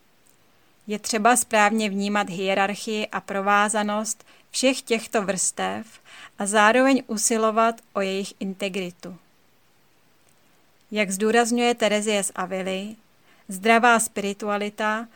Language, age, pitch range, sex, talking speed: Czech, 30-49, 200-230 Hz, female, 90 wpm